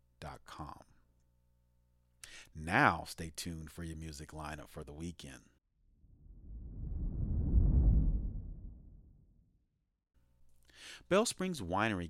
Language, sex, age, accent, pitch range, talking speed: English, male, 40-59, American, 80-110 Hz, 70 wpm